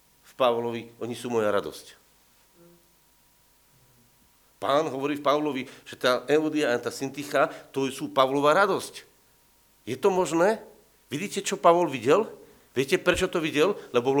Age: 50-69